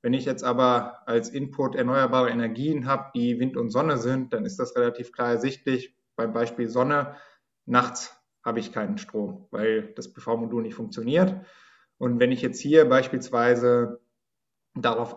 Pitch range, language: 120-150 Hz, German